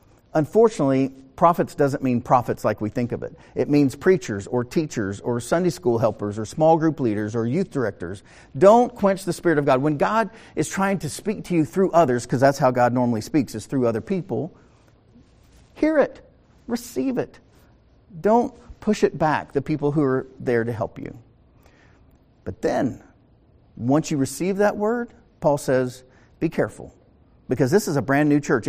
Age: 50-69